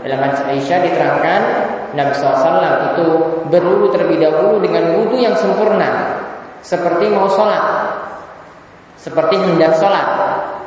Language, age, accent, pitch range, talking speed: Romanian, 20-39, Indonesian, 150-190 Hz, 110 wpm